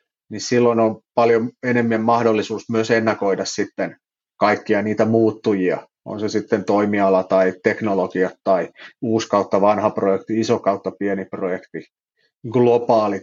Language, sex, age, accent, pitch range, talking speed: Finnish, male, 30-49, native, 100-115 Hz, 125 wpm